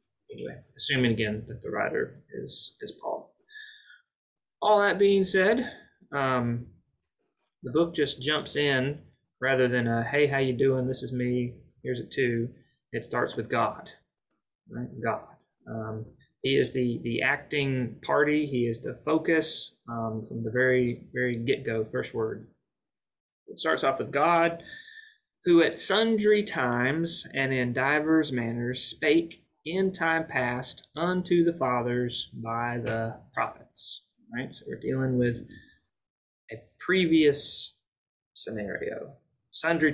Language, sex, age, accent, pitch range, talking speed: English, male, 30-49, American, 120-155 Hz, 135 wpm